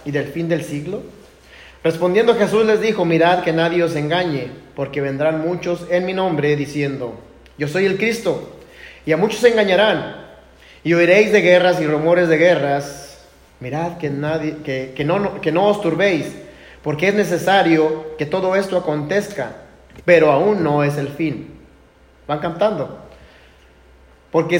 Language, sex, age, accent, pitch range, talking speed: Spanish, male, 30-49, Mexican, 140-190 Hz, 150 wpm